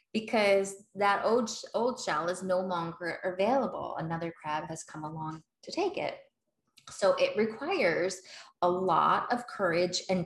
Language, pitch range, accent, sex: English, 170-210 Hz, American, female